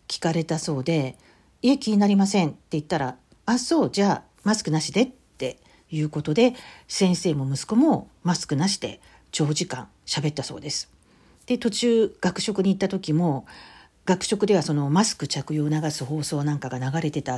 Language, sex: Japanese, female